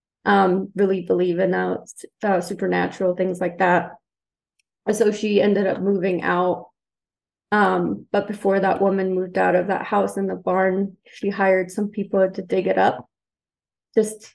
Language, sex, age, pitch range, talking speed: English, female, 30-49, 190-215 Hz, 165 wpm